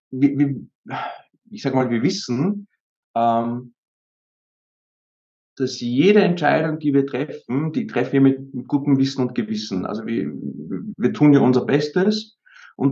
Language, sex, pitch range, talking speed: German, male, 120-145 Hz, 120 wpm